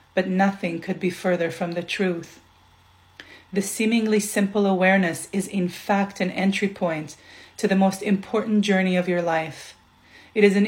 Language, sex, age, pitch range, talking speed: English, female, 30-49, 175-200 Hz, 165 wpm